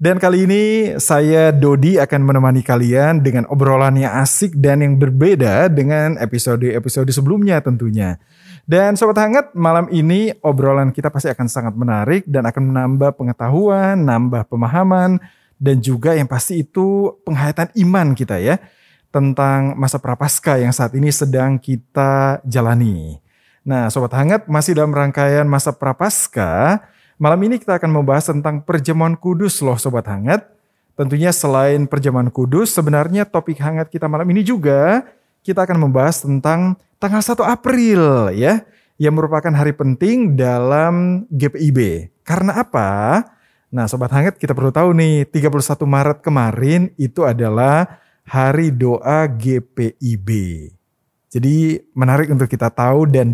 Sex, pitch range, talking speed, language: male, 130-175 Hz, 135 wpm, Indonesian